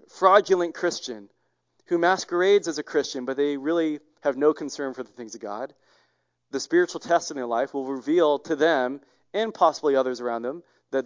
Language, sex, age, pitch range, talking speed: English, male, 30-49, 125-180 Hz, 185 wpm